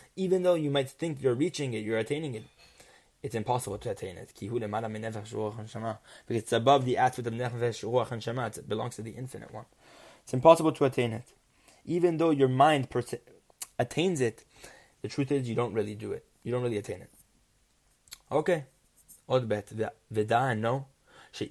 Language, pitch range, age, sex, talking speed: English, 115-150 Hz, 20-39, male, 140 wpm